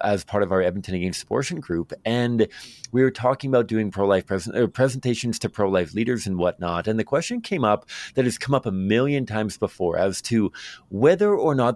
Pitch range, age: 95-130 Hz, 30-49